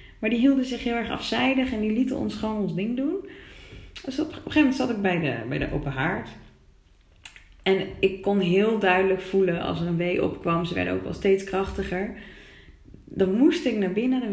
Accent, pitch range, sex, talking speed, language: Dutch, 155-215 Hz, female, 215 wpm, Dutch